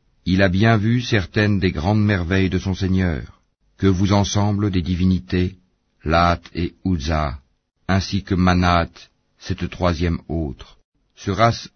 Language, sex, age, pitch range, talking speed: French, male, 50-69, 85-100 Hz, 135 wpm